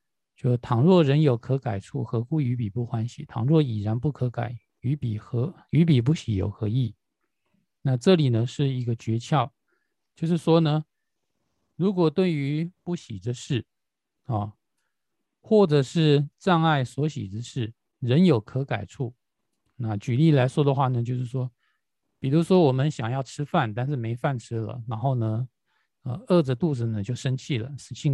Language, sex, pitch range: Chinese, male, 115-150 Hz